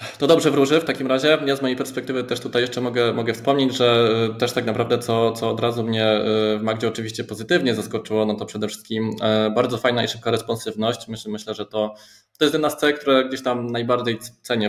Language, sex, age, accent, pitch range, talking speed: Polish, male, 20-39, native, 105-130 Hz, 215 wpm